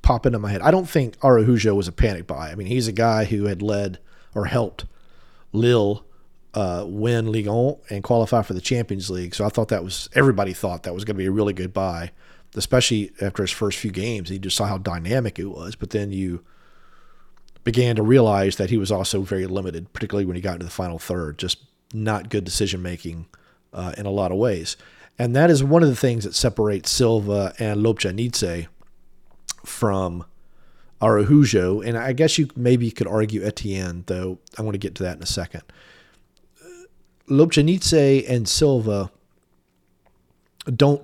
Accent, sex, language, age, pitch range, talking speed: American, male, English, 40-59, 95-120 Hz, 185 wpm